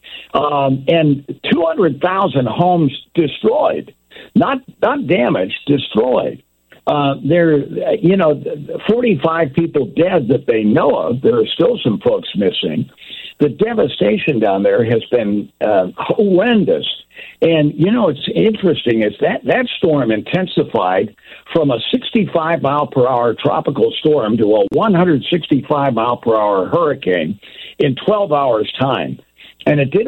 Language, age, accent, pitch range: English, 60-79, American, 120-180 Hz